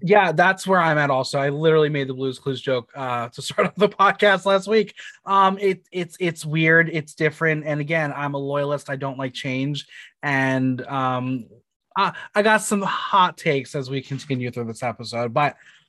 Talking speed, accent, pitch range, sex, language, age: 195 wpm, American, 135-195 Hz, male, English, 20-39